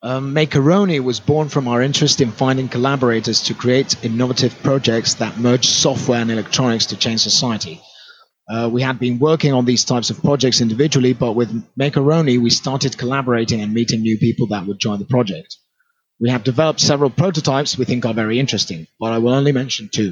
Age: 30-49